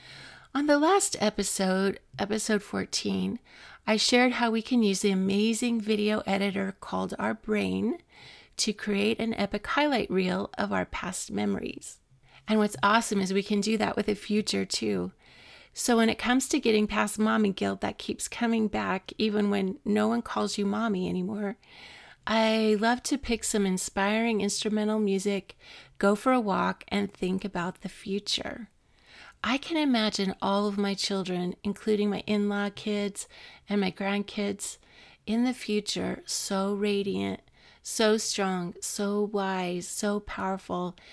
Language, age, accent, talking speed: English, 40-59, American, 150 wpm